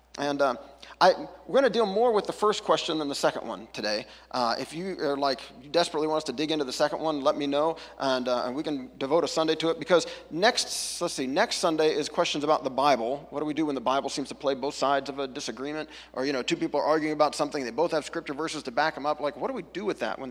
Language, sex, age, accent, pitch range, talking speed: English, male, 40-59, American, 145-185 Hz, 285 wpm